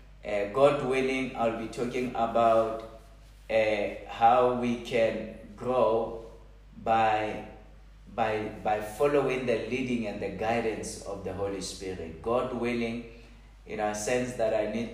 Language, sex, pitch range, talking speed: English, male, 110-125 Hz, 140 wpm